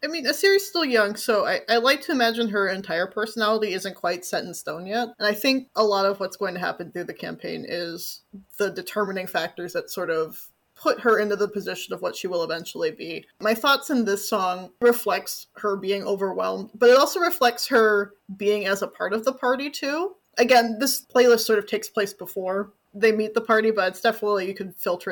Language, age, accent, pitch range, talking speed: English, 20-39, American, 195-245 Hz, 215 wpm